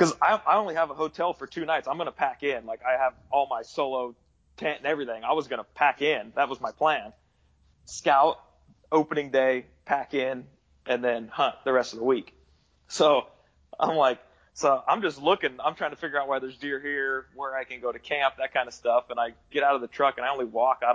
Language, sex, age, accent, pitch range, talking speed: English, male, 20-39, American, 120-140 Hz, 245 wpm